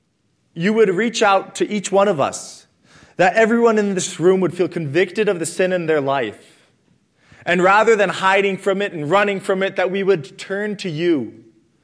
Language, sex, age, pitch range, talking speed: English, male, 20-39, 150-195 Hz, 200 wpm